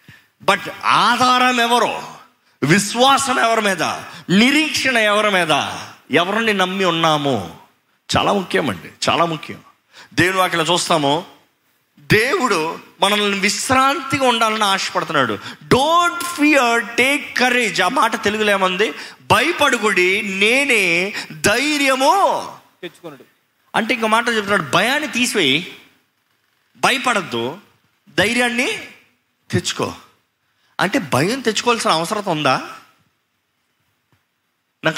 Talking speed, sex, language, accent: 85 wpm, male, Telugu, native